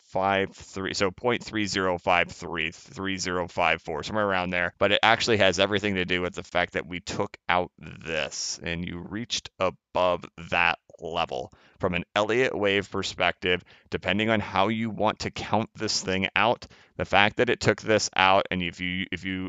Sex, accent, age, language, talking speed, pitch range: male, American, 30-49, English, 195 wpm, 90-105 Hz